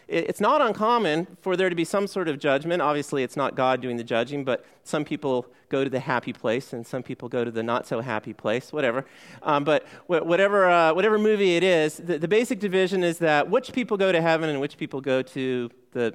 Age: 40-59